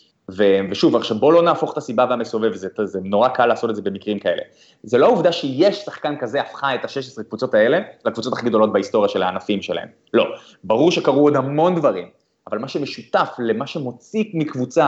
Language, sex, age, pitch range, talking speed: Hebrew, male, 20-39, 110-165 Hz, 190 wpm